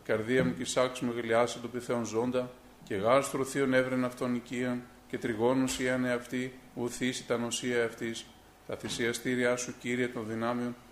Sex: male